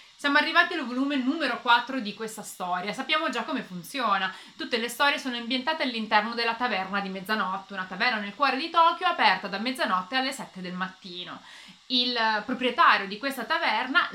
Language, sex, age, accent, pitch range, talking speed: Italian, female, 30-49, native, 200-270 Hz, 175 wpm